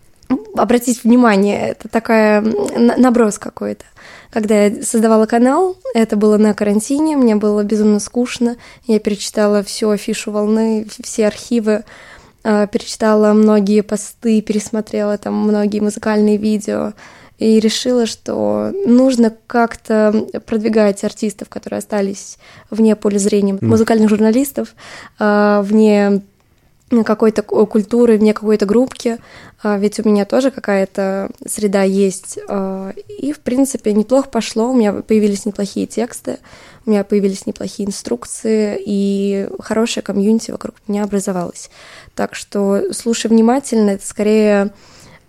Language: Russian